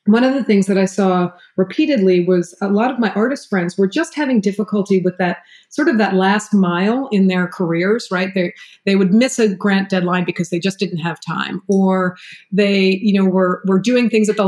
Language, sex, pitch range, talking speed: English, female, 185-220 Hz, 220 wpm